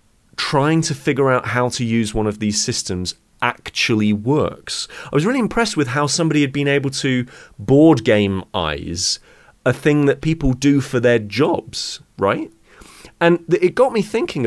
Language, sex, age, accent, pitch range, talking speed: English, male, 30-49, British, 105-140 Hz, 170 wpm